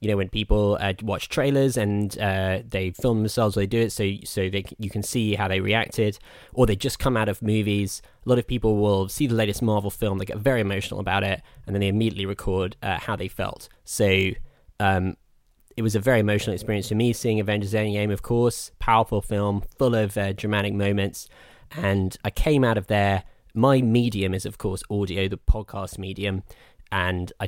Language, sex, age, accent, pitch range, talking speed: English, male, 10-29, British, 95-115 Hz, 205 wpm